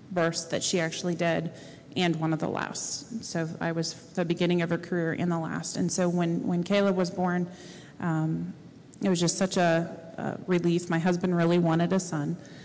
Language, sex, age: English, female, 30-49